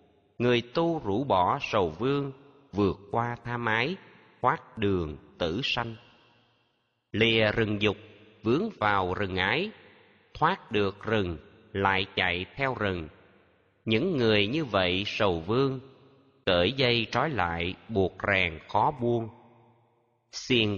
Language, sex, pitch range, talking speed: Vietnamese, male, 100-125 Hz, 125 wpm